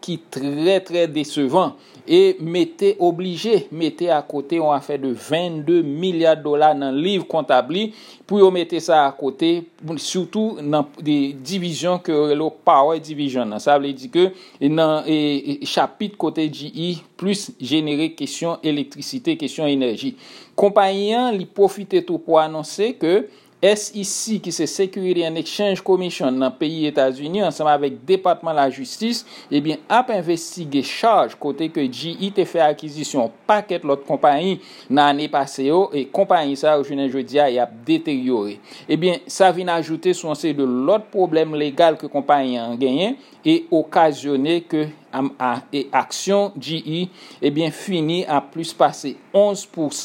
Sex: male